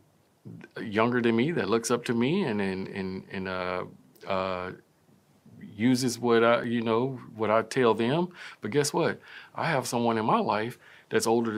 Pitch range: 105-130 Hz